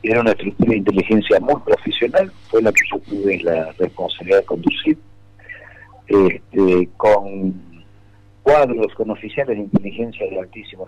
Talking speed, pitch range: 140 wpm, 100-135 Hz